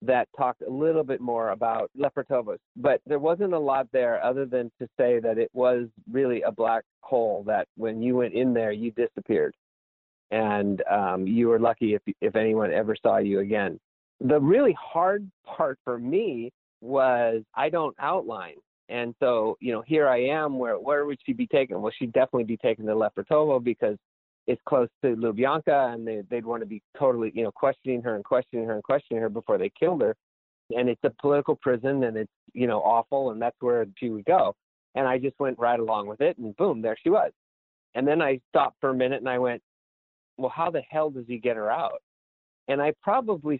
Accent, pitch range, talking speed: American, 115-135 Hz, 210 wpm